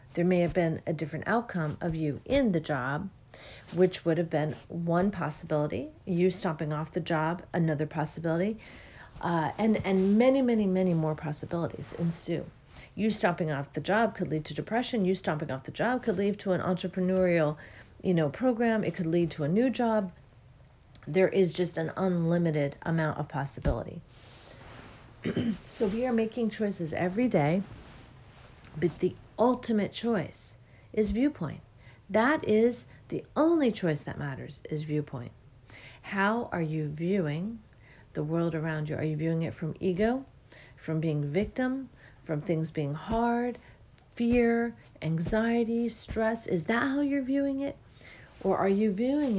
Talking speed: 155 wpm